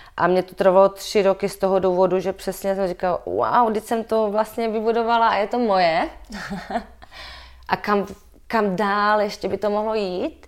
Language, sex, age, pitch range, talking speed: Czech, female, 20-39, 175-220 Hz, 180 wpm